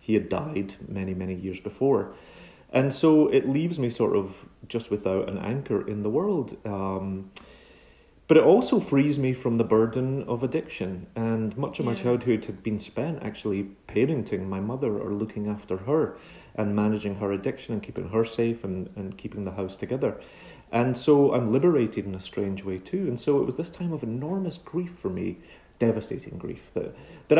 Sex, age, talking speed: male, 30-49, 190 wpm